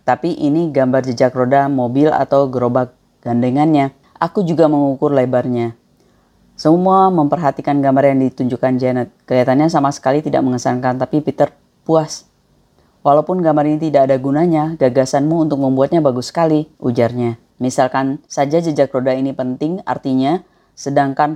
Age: 30-49